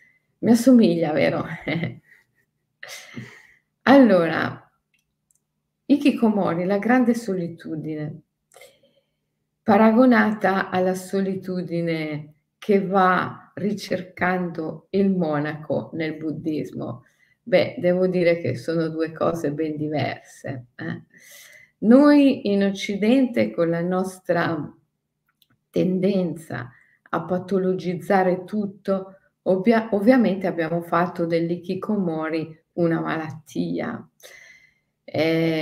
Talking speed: 75 wpm